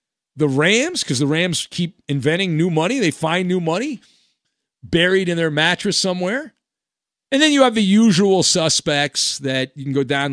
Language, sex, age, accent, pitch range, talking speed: English, male, 40-59, American, 125-185 Hz, 175 wpm